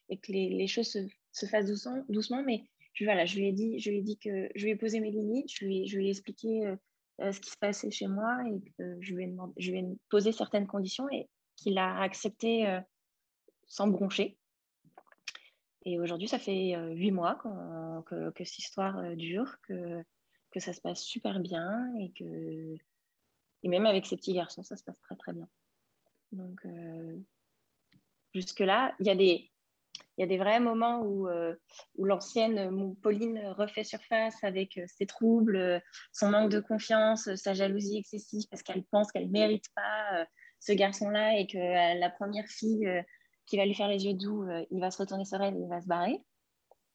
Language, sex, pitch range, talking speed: French, female, 185-215 Hz, 210 wpm